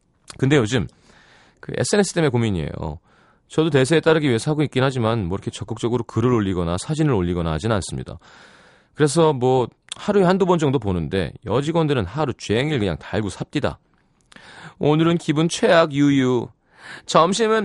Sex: male